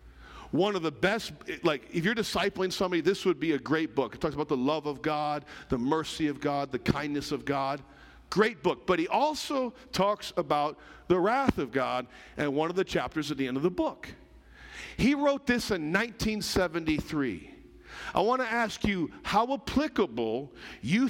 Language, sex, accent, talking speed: English, male, American, 185 wpm